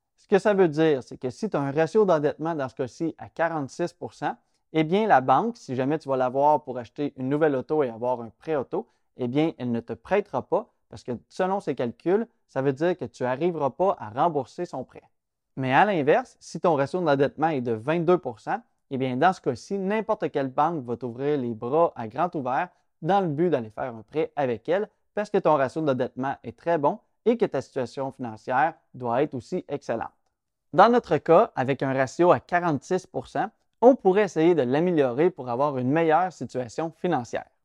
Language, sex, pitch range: French, male, 130-175 Hz